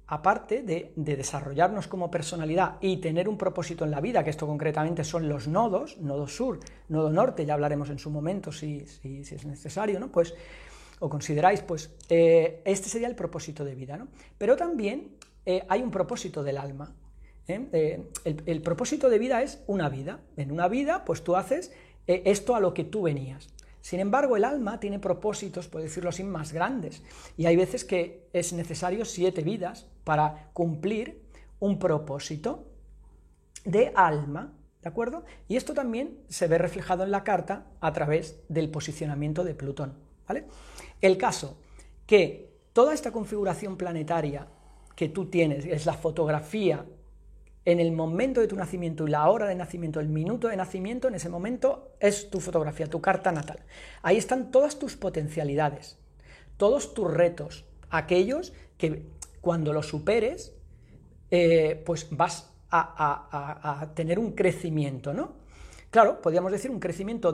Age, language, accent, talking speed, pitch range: 40-59, Spanish, Spanish, 165 wpm, 150-195 Hz